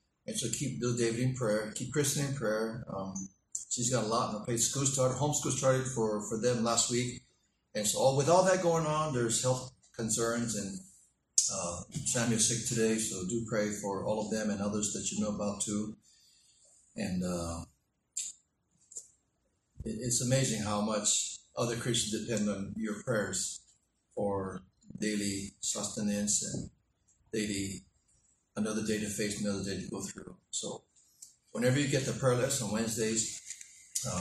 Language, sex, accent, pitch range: English, male, American, 105-125 Hz